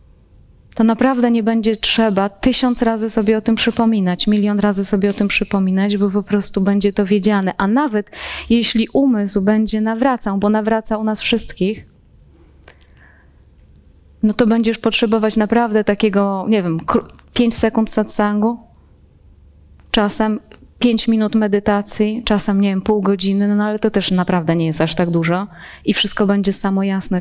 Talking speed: 150 wpm